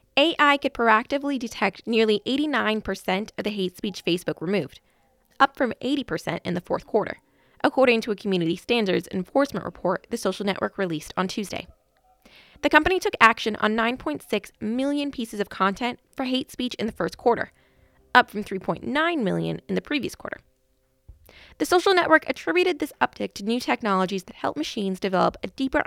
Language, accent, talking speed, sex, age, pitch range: English, American, 165 wpm, female, 20-39, 185-265 Hz